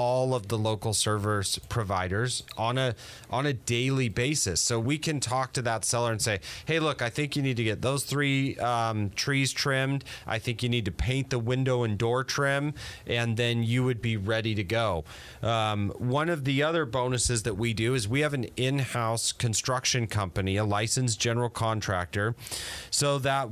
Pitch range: 110-130 Hz